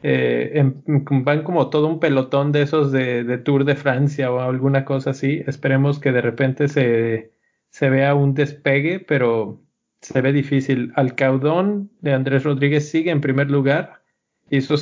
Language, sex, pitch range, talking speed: Spanish, male, 135-160 Hz, 165 wpm